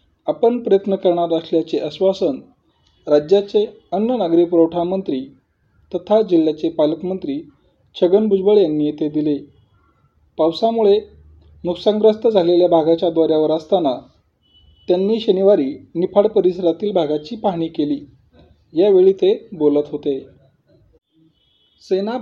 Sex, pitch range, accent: male, 155-200 Hz, native